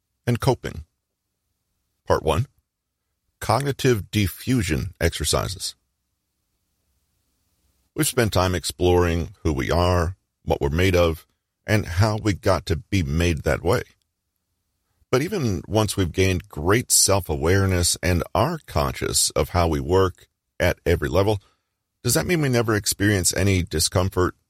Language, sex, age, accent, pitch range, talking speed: English, male, 40-59, American, 85-100 Hz, 130 wpm